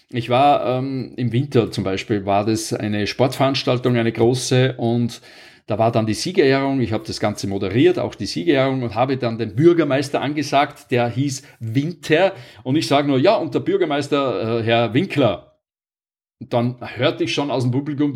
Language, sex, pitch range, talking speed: German, male, 120-145 Hz, 180 wpm